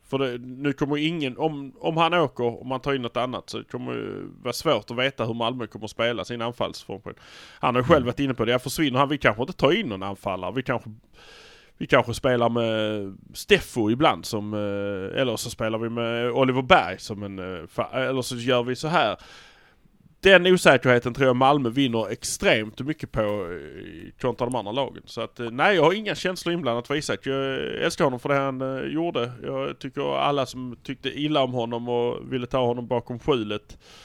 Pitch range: 115-140 Hz